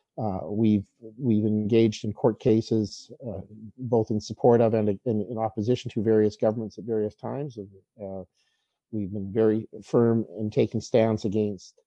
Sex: male